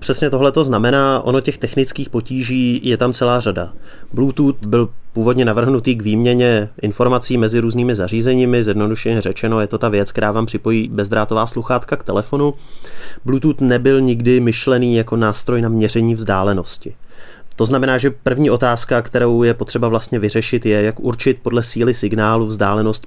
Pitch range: 110-125 Hz